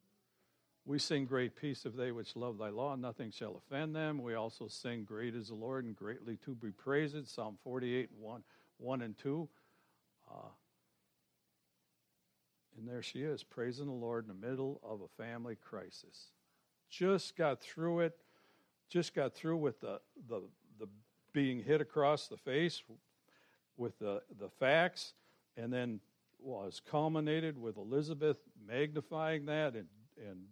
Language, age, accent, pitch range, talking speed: English, 60-79, American, 110-150 Hz, 145 wpm